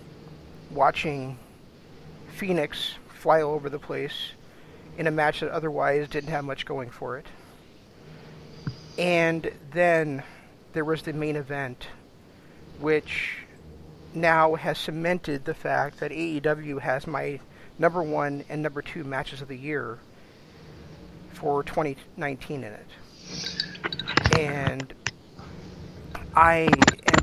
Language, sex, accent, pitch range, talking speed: English, male, American, 140-165 Hz, 110 wpm